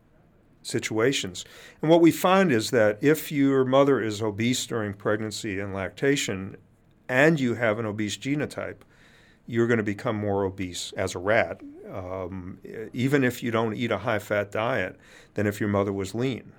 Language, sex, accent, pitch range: English, male, American, 100-130 Hz